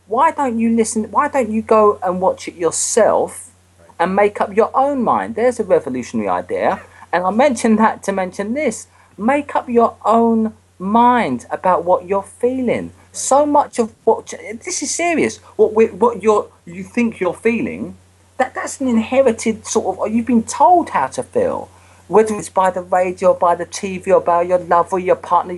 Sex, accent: male, British